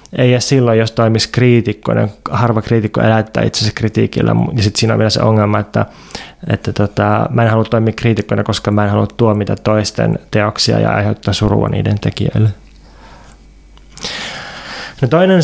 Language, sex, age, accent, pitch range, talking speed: Finnish, male, 20-39, native, 110-135 Hz, 160 wpm